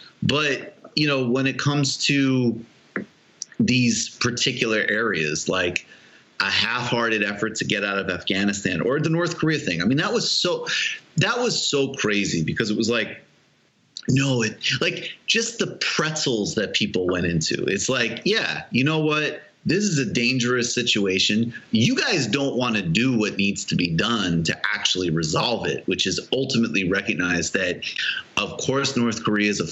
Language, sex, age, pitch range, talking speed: English, male, 30-49, 105-140 Hz, 170 wpm